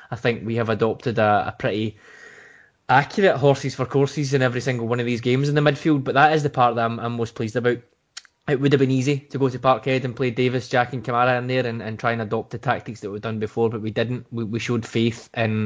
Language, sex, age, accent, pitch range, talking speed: English, male, 20-39, British, 110-125 Hz, 265 wpm